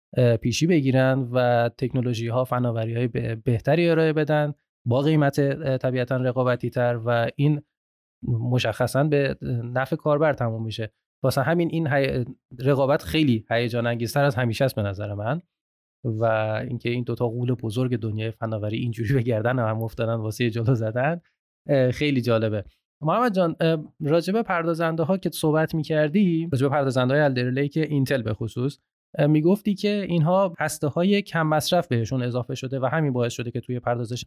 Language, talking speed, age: Persian, 150 wpm, 20-39